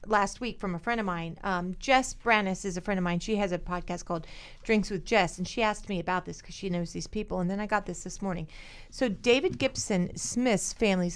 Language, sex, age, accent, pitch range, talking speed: English, female, 40-59, American, 180-225 Hz, 250 wpm